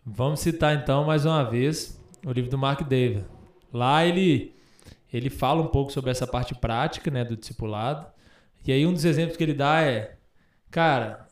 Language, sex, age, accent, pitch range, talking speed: Portuguese, male, 20-39, Brazilian, 135-175 Hz, 180 wpm